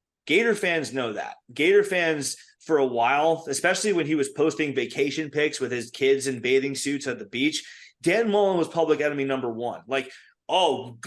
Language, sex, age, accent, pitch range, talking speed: English, male, 30-49, American, 125-165 Hz, 185 wpm